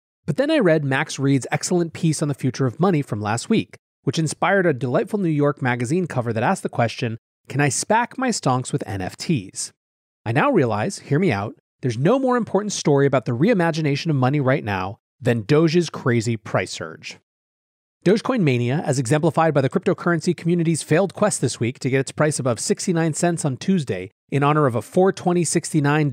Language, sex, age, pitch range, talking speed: English, male, 30-49, 125-170 Hz, 195 wpm